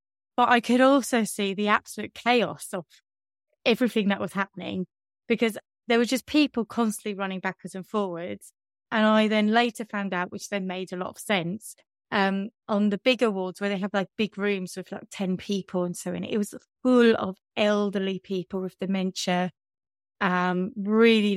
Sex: female